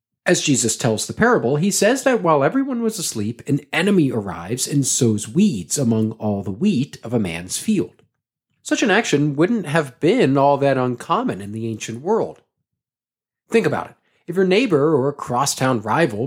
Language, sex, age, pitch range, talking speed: English, male, 40-59, 115-170 Hz, 180 wpm